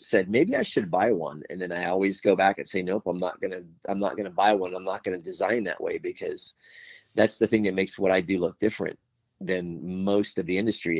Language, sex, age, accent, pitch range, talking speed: English, male, 40-59, American, 90-105 Hz, 245 wpm